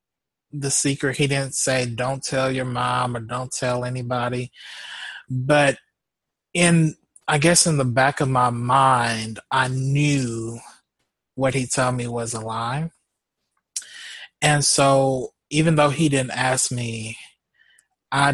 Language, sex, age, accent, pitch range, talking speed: English, male, 30-49, American, 115-145 Hz, 135 wpm